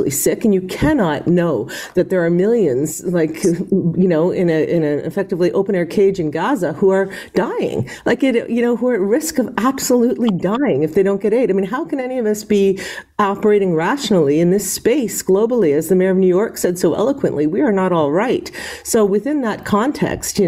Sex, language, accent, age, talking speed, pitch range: female, English, American, 50-69, 215 wpm, 180-230 Hz